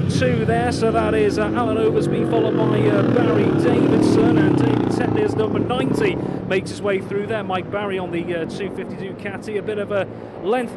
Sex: male